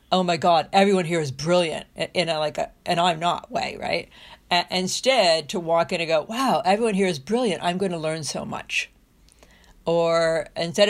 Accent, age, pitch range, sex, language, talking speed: American, 60-79, 165-200 Hz, female, English, 200 wpm